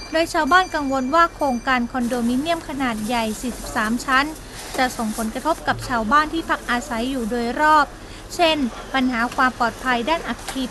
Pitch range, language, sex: 235-295 Hz, Thai, female